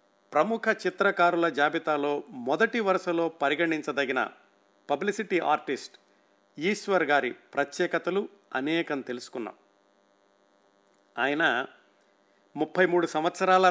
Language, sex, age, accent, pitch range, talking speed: Telugu, male, 50-69, native, 120-175 Hz, 75 wpm